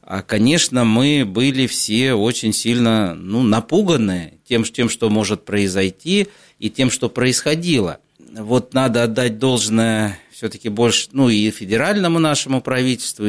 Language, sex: Russian, male